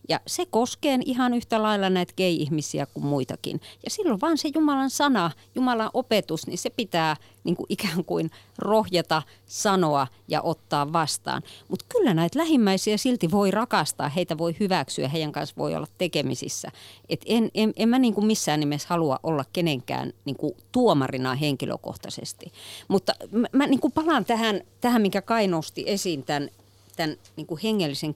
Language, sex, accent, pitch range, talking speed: Finnish, female, native, 150-215 Hz, 140 wpm